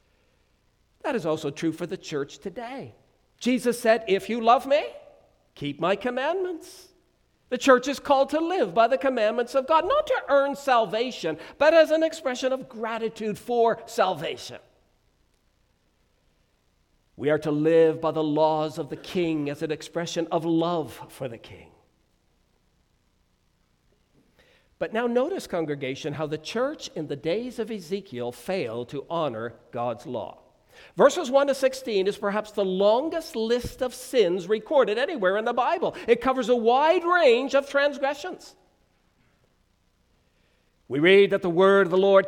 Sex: male